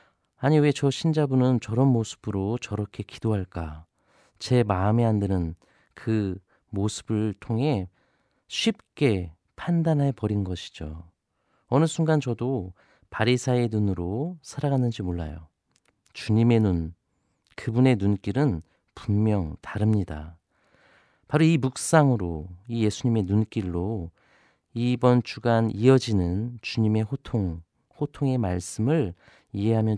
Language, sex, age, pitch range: Korean, male, 40-59, 95-125 Hz